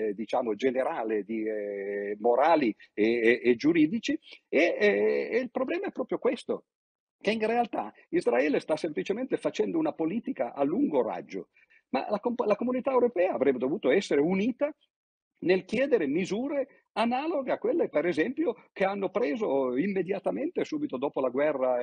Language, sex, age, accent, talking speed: Italian, male, 50-69, native, 150 wpm